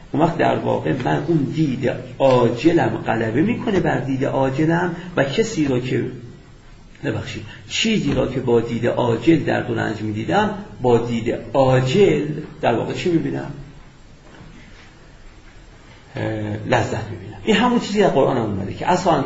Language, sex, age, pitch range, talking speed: Persian, male, 50-69, 115-175 Hz, 135 wpm